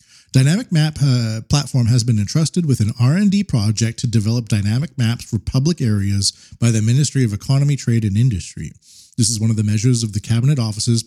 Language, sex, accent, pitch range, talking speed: English, male, American, 110-140 Hz, 195 wpm